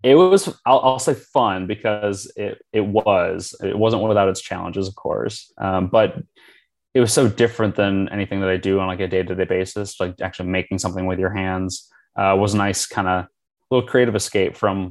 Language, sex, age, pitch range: English, male, 20-39, 95-110 Hz